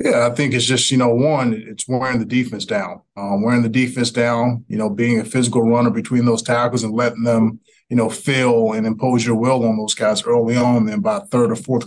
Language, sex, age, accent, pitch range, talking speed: English, male, 20-39, American, 110-130 Hz, 240 wpm